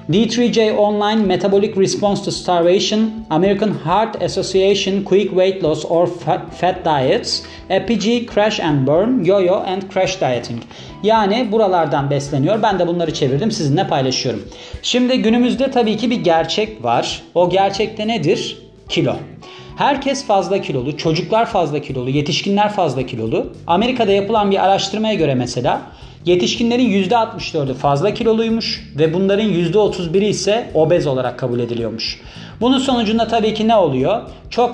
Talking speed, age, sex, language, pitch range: 135 wpm, 40-59, male, Turkish, 155-210 Hz